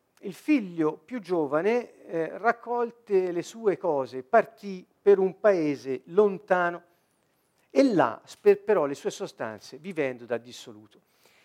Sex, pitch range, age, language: male, 135-215 Hz, 50-69, Italian